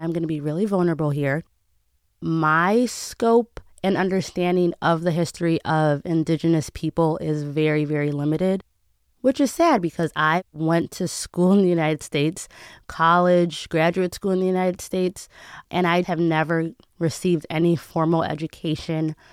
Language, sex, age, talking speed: English, female, 20-39, 145 wpm